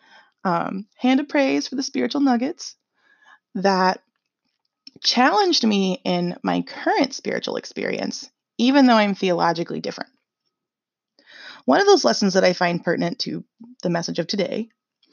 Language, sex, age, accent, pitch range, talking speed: English, female, 20-39, American, 175-245 Hz, 135 wpm